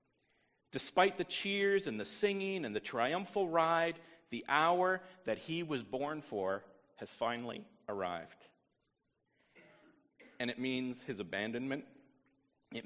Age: 40-59